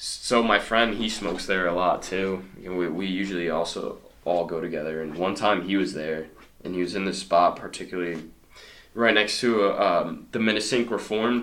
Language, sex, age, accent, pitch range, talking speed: English, male, 20-39, American, 80-110 Hz, 195 wpm